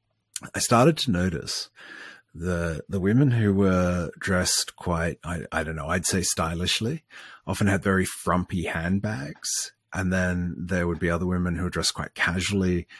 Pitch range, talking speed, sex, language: 85-100 Hz, 160 wpm, male, English